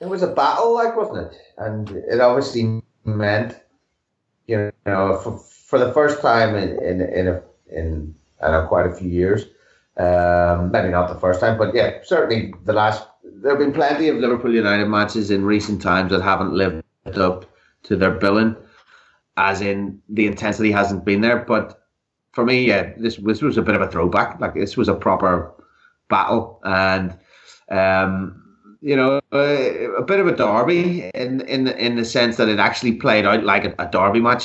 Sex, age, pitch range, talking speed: male, 30-49, 95-115 Hz, 185 wpm